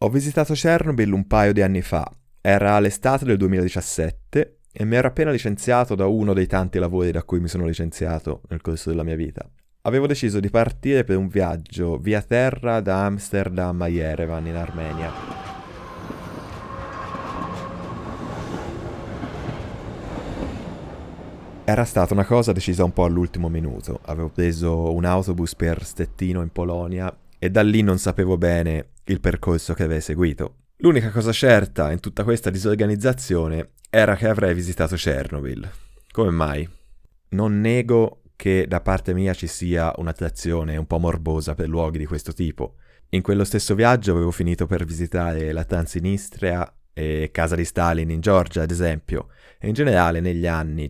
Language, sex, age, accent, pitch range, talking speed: Italian, male, 20-39, native, 80-100 Hz, 150 wpm